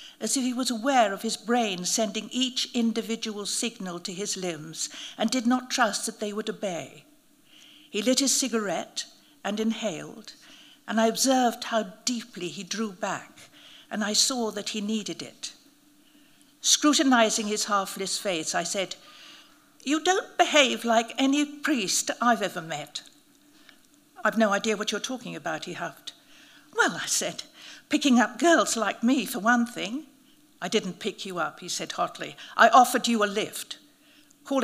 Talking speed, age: 160 wpm, 60-79